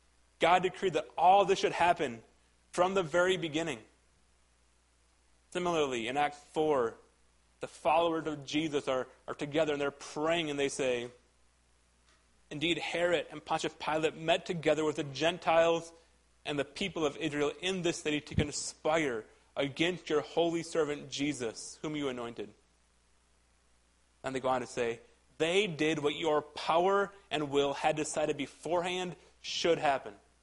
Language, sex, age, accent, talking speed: English, male, 30-49, American, 145 wpm